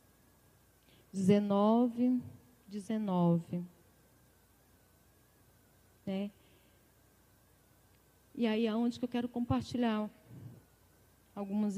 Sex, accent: female, Brazilian